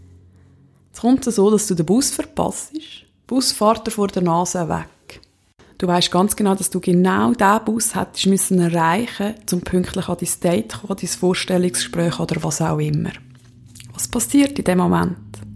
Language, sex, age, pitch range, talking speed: German, female, 20-39, 170-225 Hz, 175 wpm